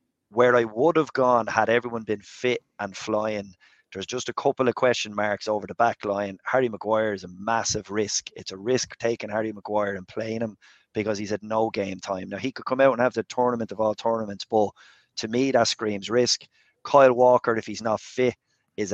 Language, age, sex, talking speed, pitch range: English, 30-49, male, 215 wpm, 100-115 Hz